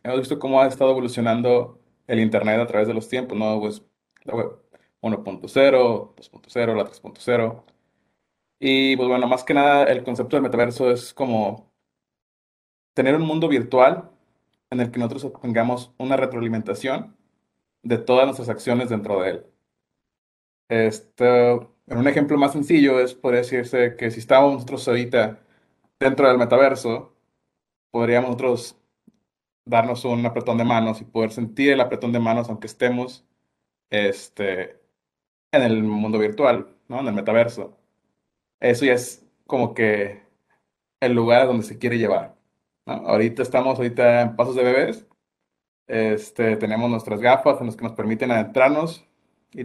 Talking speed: 145 wpm